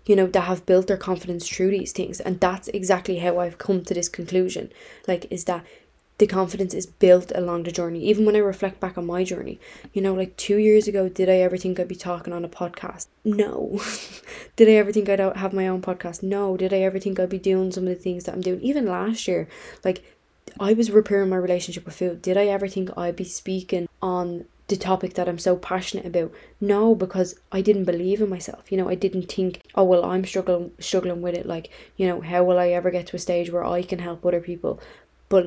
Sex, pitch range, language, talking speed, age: female, 175-190 Hz, English, 240 wpm, 10-29